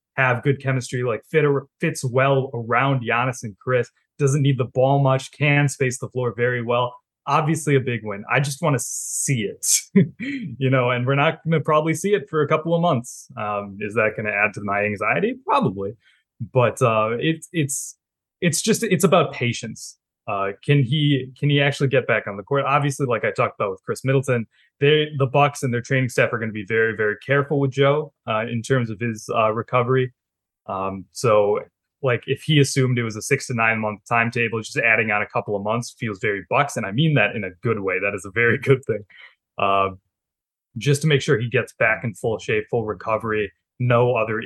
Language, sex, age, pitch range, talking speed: English, male, 20-39, 110-140 Hz, 220 wpm